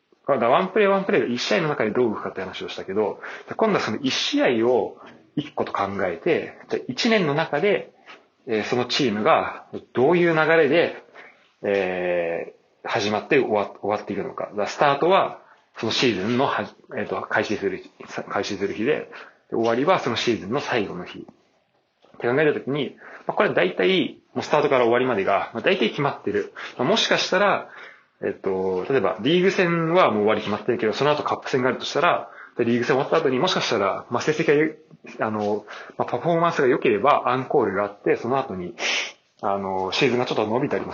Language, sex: Japanese, male